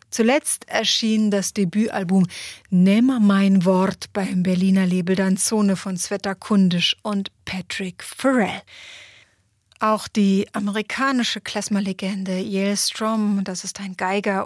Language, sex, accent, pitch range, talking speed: German, female, German, 190-220 Hz, 110 wpm